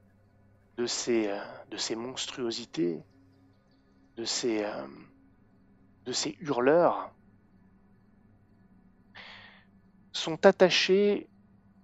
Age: 30-49